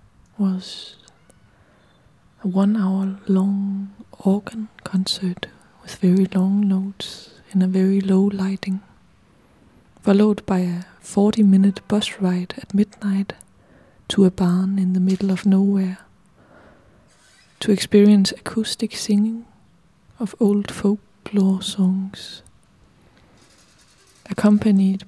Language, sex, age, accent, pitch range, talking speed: English, female, 20-39, Danish, 190-205 Hz, 100 wpm